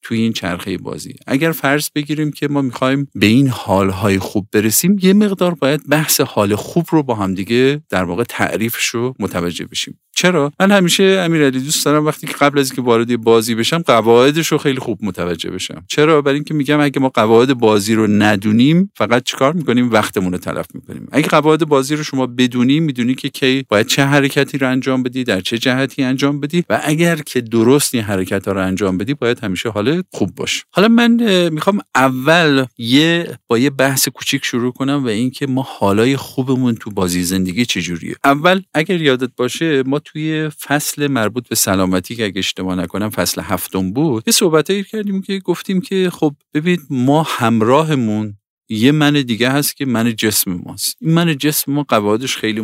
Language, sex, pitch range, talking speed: Persian, male, 110-150 Hz, 185 wpm